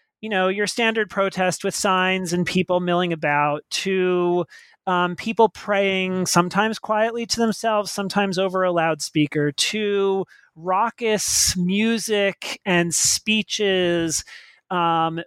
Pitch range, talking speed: 165-205 Hz, 115 wpm